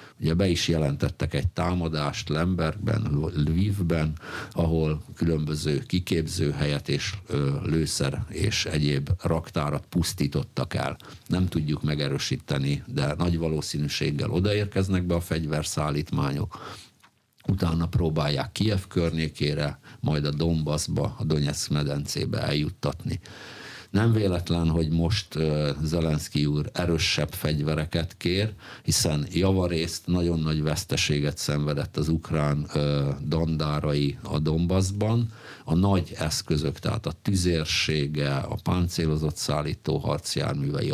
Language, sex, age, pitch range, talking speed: Hungarian, male, 60-79, 75-90 Hz, 100 wpm